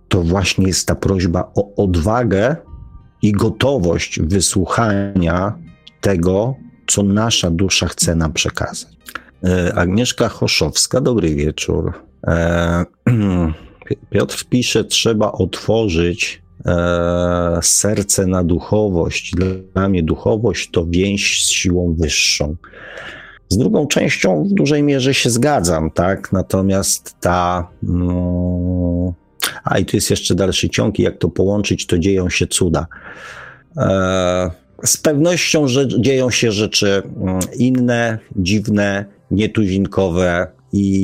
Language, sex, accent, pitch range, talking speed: Polish, male, native, 85-105 Hz, 105 wpm